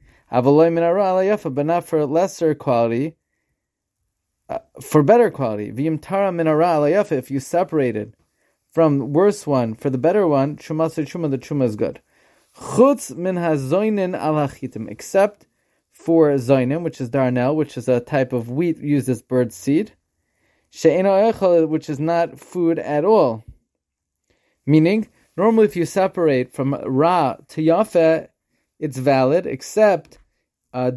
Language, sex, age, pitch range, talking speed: English, male, 20-39, 135-175 Hz, 130 wpm